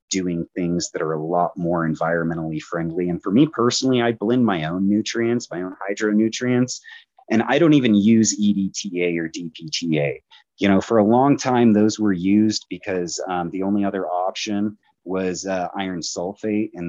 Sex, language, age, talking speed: male, English, 30-49, 175 wpm